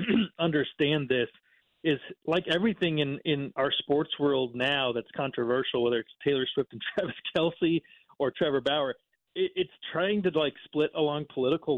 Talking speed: 160 wpm